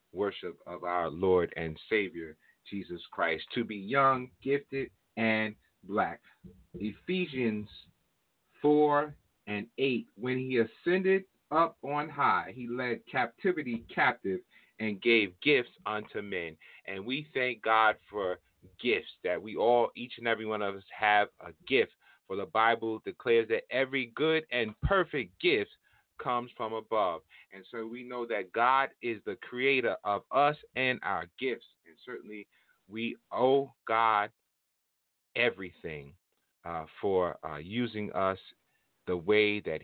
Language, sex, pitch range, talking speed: English, male, 105-135 Hz, 140 wpm